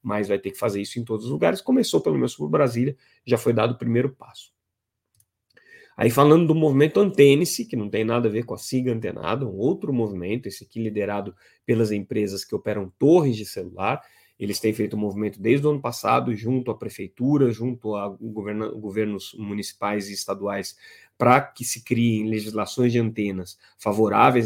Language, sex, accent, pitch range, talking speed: Portuguese, male, Brazilian, 105-125 Hz, 185 wpm